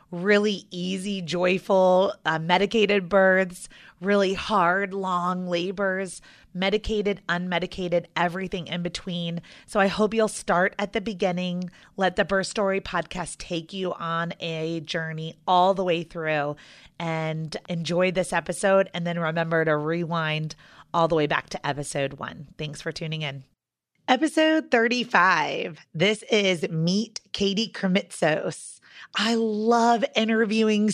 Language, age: English, 30-49